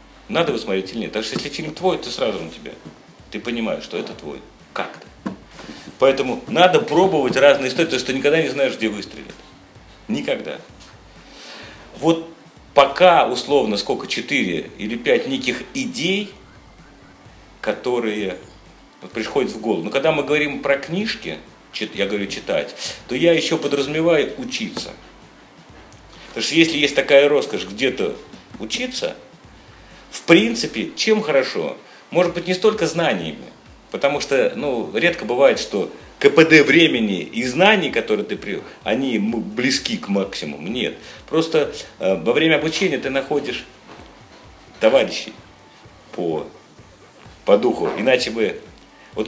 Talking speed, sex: 135 wpm, male